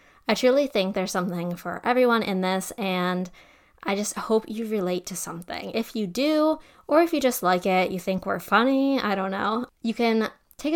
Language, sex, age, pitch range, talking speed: English, female, 10-29, 185-230 Hz, 200 wpm